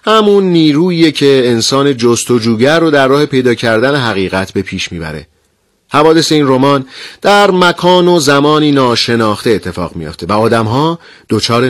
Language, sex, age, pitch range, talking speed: Persian, male, 40-59, 110-150 Hz, 140 wpm